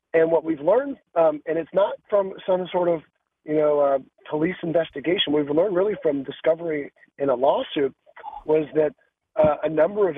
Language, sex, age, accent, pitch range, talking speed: English, male, 40-59, American, 145-175 Hz, 185 wpm